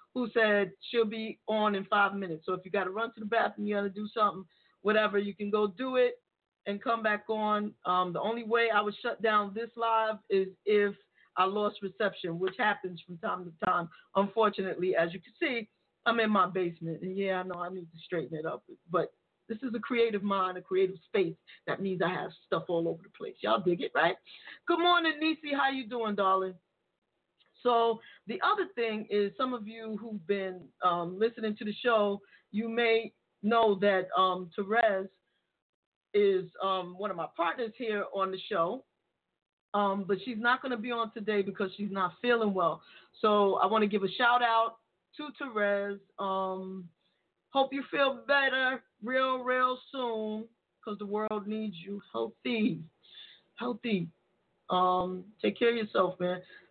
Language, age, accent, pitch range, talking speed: English, 40-59, American, 190-230 Hz, 185 wpm